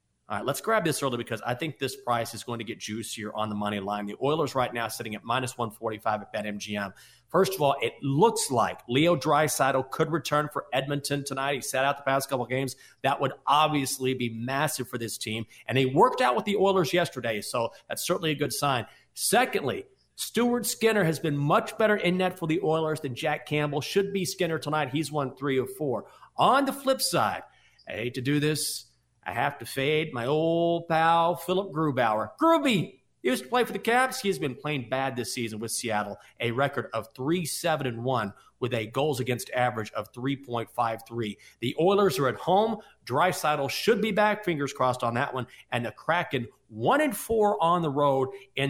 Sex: male